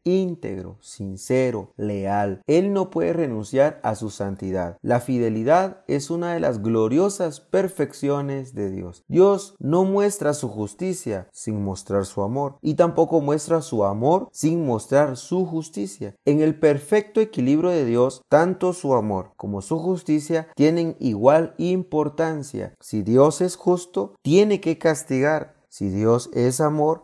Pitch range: 115-165 Hz